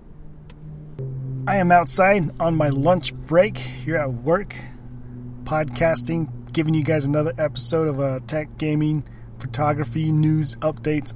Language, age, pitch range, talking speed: English, 30-49, 125-155 Hz, 125 wpm